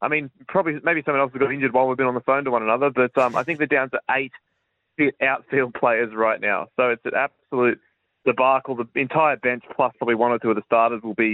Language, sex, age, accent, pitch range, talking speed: English, male, 20-39, Australian, 115-145 Hz, 255 wpm